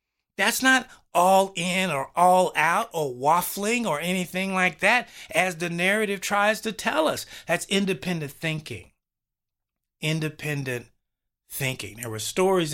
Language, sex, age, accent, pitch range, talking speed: English, male, 30-49, American, 125-175 Hz, 130 wpm